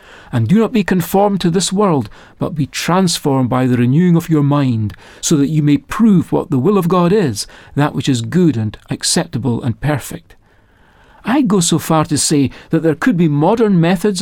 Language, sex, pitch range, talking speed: English, male, 140-190 Hz, 205 wpm